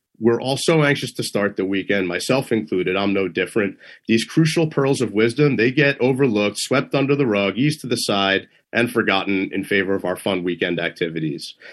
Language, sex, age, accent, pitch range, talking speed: English, male, 30-49, American, 110-145 Hz, 195 wpm